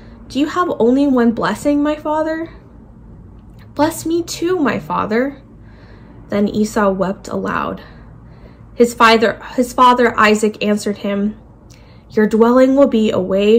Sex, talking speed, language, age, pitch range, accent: female, 130 wpm, English, 20-39, 180-240 Hz, American